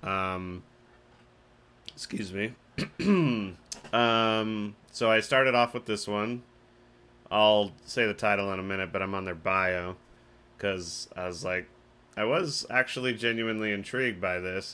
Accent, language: American, English